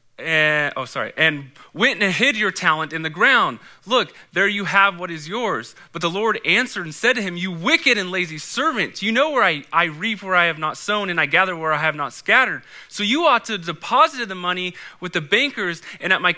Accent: American